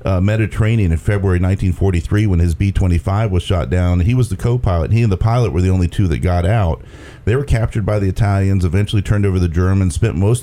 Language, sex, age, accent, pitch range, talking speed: English, male, 40-59, American, 95-110 Hz, 225 wpm